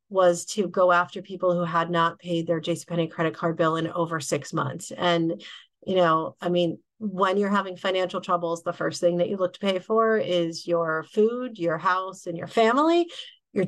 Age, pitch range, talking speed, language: 40-59, 170-200 Hz, 200 wpm, English